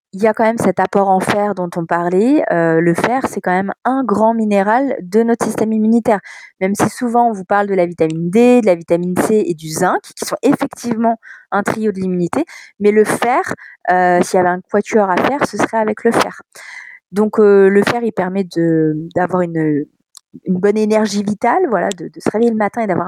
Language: French